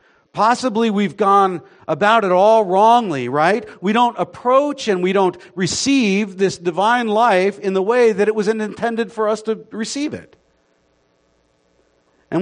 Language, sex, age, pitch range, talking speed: English, male, 50-69, 170-245 Hz, 150 wpm